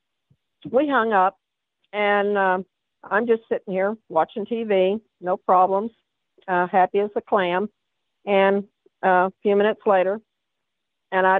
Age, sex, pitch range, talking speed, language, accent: 50-69, female, 180-220 Hz, 135 wpm, English, American